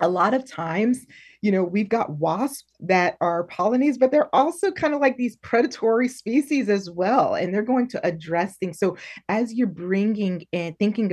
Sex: female